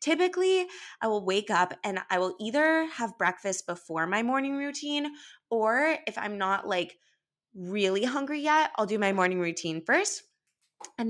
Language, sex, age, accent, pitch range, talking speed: English, female, 20-39, American, 180-265 Hz, 160 wpm